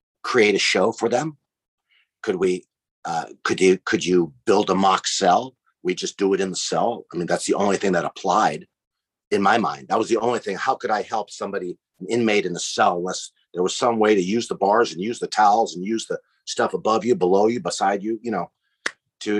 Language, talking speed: English, 230 wpm